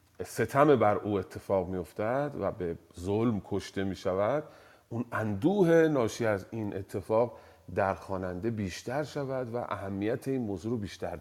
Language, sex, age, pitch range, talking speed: Persian, male, 40-59, 105-165 Hz, 145 wpm